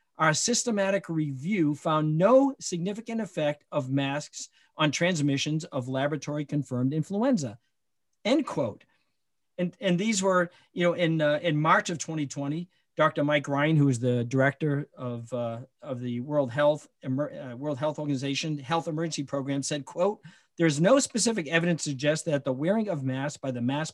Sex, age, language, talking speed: male, 50-69, English, 165 wpm